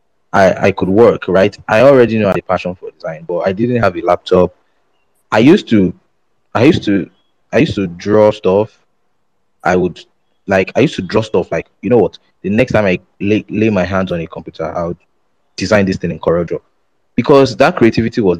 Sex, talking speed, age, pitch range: male, 215 wpm, 20-39, 95-115 Hz